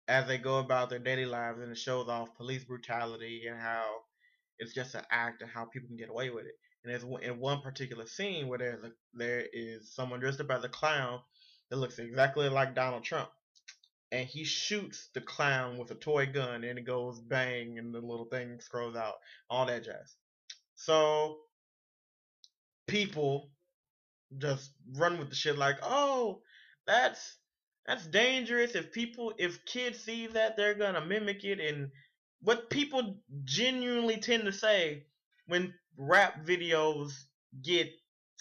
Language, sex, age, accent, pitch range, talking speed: English, male, 20-39, American, 125-180 Hz, 165 wpm